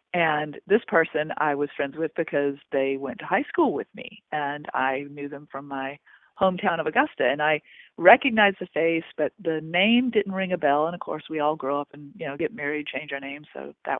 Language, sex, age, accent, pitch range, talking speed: English, female, 40-59, American, 155-215 Hz, 225 wpm